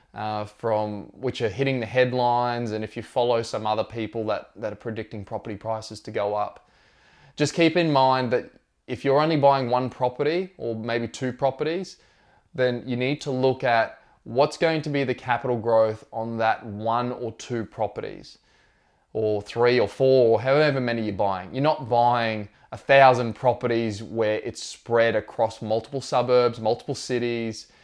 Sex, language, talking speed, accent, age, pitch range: male, English, 170 wpm, Australian, 20-39, 110-130 Hz